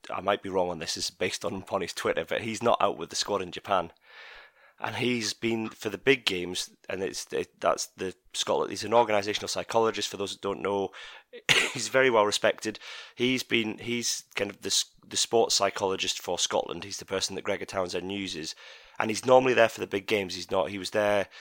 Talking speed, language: 215 wpm, English